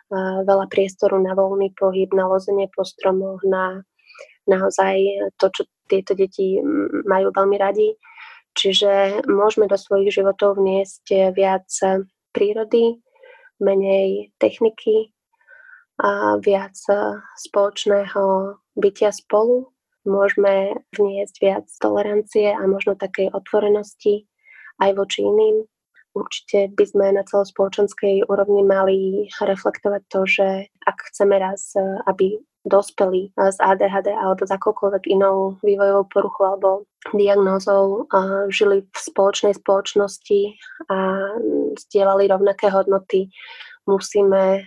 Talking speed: 105 wpm